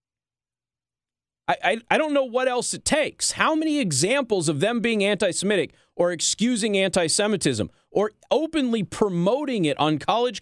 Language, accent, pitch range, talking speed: English, American, 115-195 Hz, 140 wpm